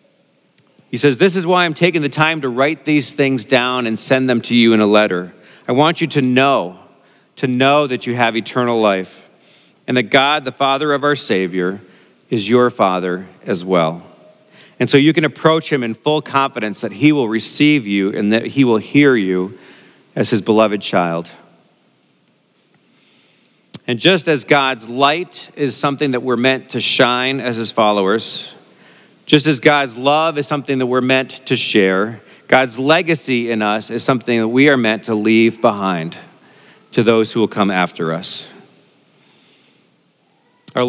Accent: American